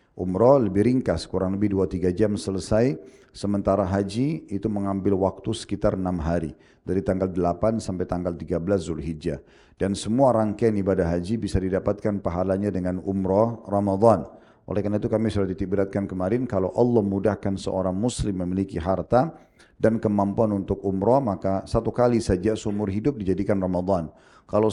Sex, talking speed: male, 150 wpm